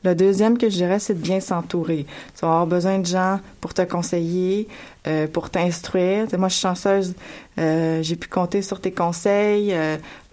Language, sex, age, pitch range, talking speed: French, female, 30-49, 170-195 Hz, 200 wpm